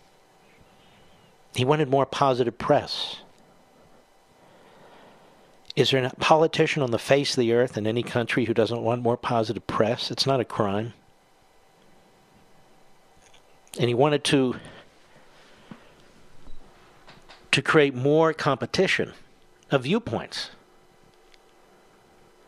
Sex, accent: male, American